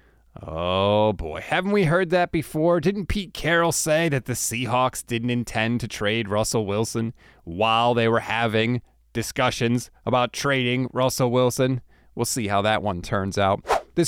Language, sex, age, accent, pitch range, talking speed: English, male, 30-49, American, 115-170 Hz, 160 wpm